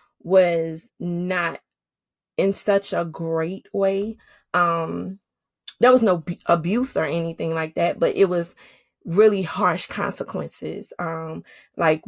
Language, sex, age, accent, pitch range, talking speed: English, female, 20-39, American, 170-210 Hz, 120 wpm